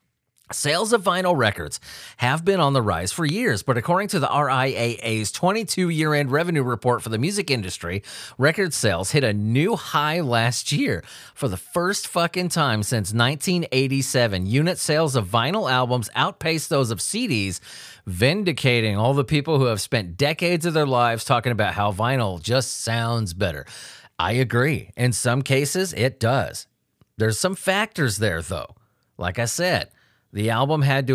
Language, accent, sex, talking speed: English, American, male, 160 wpm